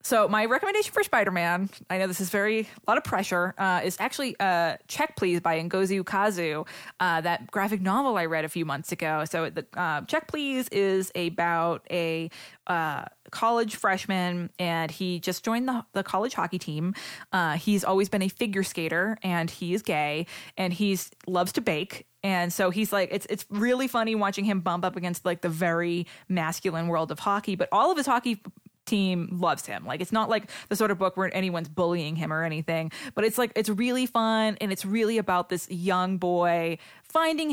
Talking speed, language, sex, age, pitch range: 200 wpm, English, female, 20-39, 175-215 Hz